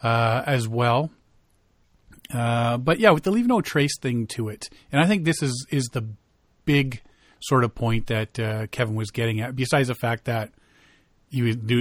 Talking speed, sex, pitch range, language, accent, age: 190 wpm, male, 115-150 Hz, English, American, 40-59